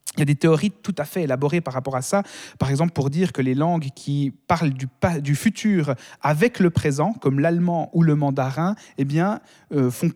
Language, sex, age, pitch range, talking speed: French, male, 30-49, 140-175 Hz, 225 wpm